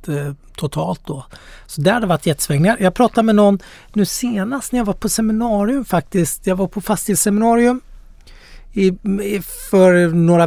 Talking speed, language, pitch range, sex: 155 wpm, Swedish, 145-180 Hz, male